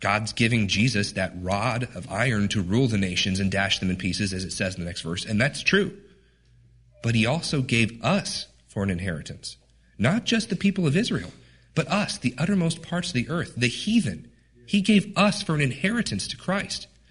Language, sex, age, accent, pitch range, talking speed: English, male, 40-59, American, 100-160 Hz, 205 wpm